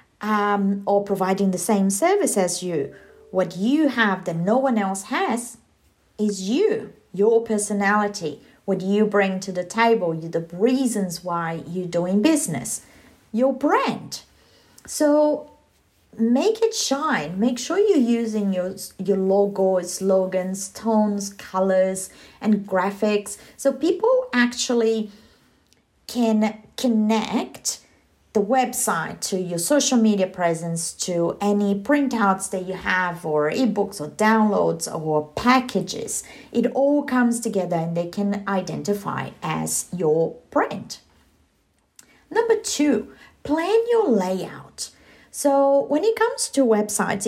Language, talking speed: English, 125 wpm